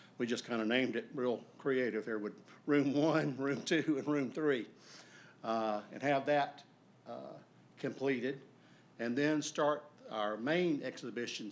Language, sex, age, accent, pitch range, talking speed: English, male, 50-69, American, 110-135 Hz, 150 wpm